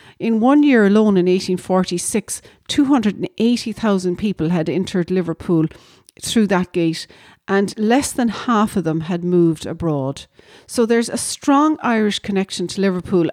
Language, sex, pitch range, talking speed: English, female, 180-235 Hz, 140 wpm